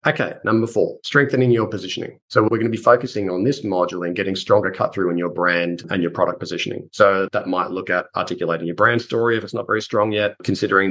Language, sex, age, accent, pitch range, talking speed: English, male, 30-49, Australian, 90-115 Hz, 235 wpm